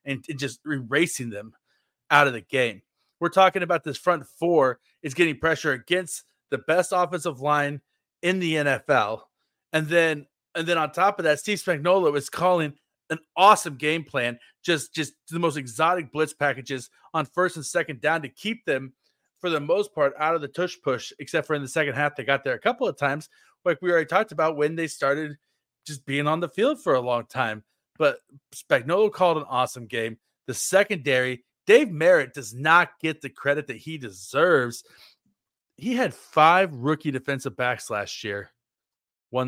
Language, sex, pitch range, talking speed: English, male, 130-170 Hz, 185 wpm